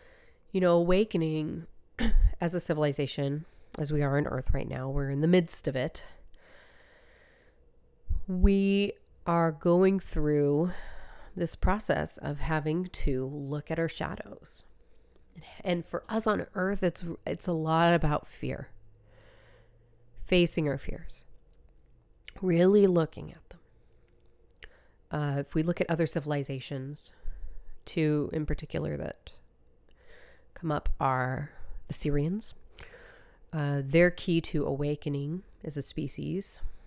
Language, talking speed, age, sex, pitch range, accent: English, 120 wpm, 30-49, female, 135-180 Hz, American